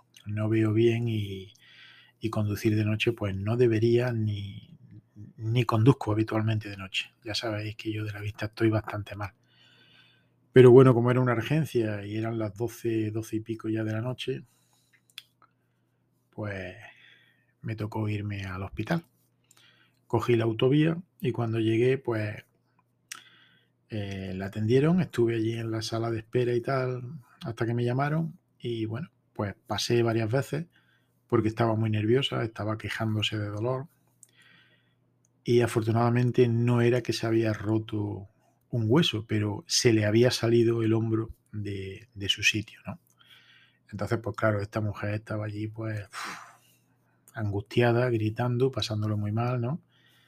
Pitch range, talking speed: 105-120 Hz, 145 wpm